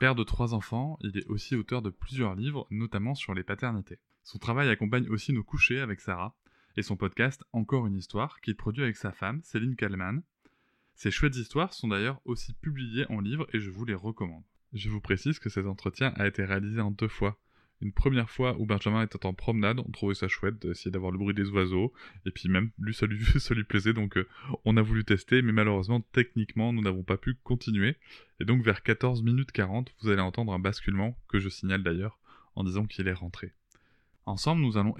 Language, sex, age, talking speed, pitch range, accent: French, male, 20-39, 215 wpm, 100-125 Hz, French